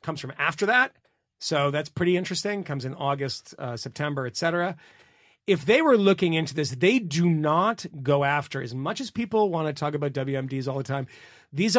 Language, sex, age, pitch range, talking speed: English, male, 30-49, 140-185 Hz, 200 wpm